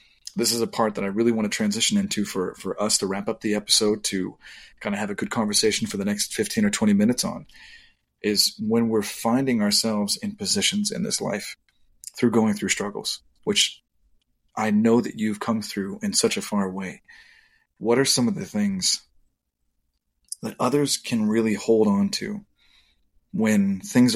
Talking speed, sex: 185 wpm, male